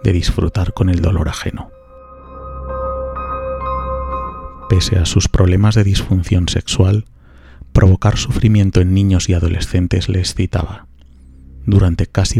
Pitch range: 65-100 Hz